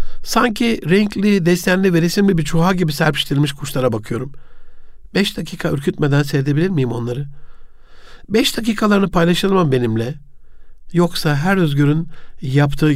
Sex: male